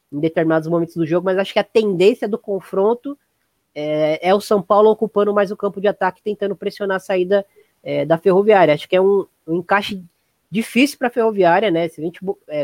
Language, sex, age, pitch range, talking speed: Portuguese, female, 20-39, 165-205 Hz, 215 wpm